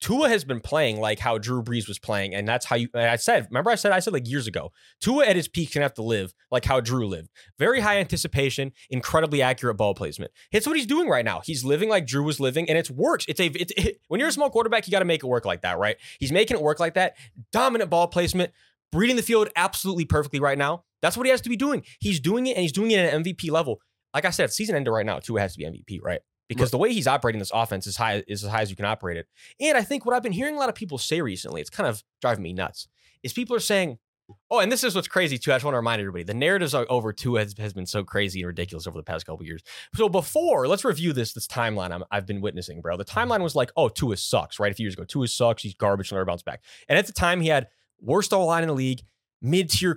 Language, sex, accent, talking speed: English, male, American, 280 wpm